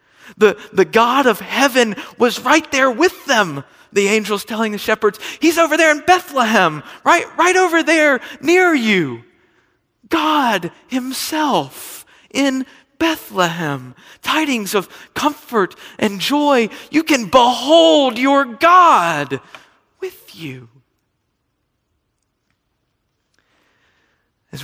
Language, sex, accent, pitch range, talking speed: English, male, American, 135-225 Hz, 105 wpm